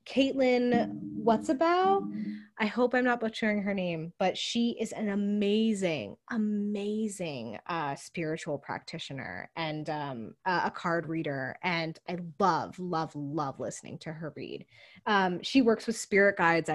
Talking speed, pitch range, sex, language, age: 140 wpm, 170-225 Hz, female, English, 20-39